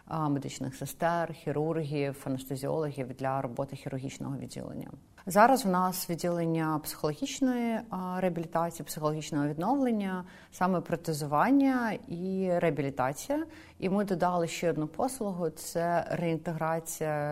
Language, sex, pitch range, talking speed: Ukrainian, female, 140-170 Hz, 100 wpm